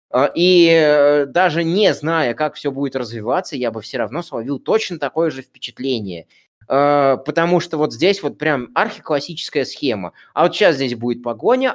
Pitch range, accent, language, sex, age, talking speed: 125-175 Hz, native, Russian, male, 20-39, 160 wpm